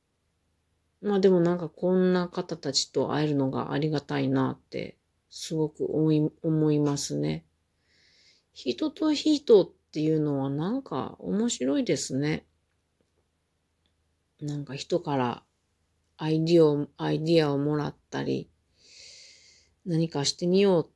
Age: 40-59